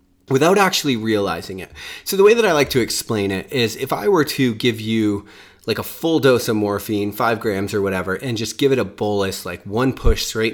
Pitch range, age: 100-140 Hz, 30-49